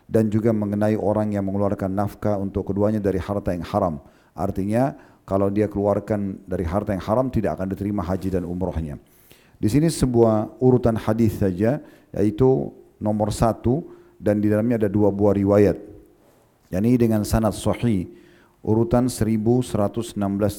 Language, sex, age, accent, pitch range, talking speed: Indonesian, male, 40-59, native, 100-115 Hz, 145 wpm